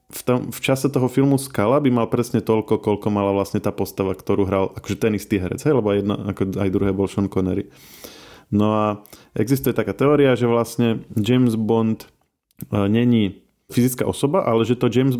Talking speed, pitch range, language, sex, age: 195 wpm, 100-120 Hz, Slovak, male, 20-39